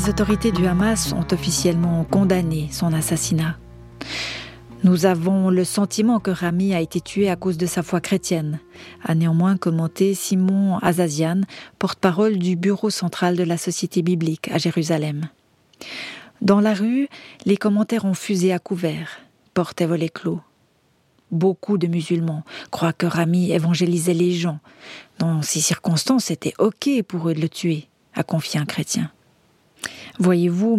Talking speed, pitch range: 150 wpm, 165-195 Hz